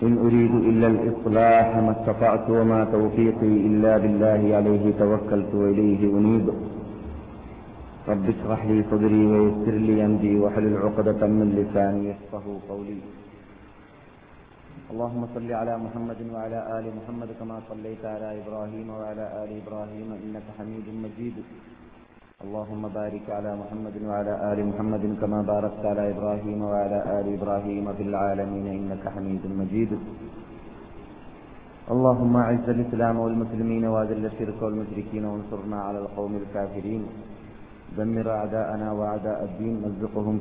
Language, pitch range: Malayalam, 105-110 Hz